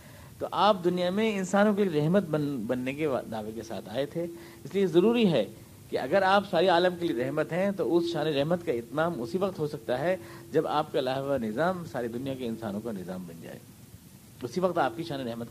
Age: 50-69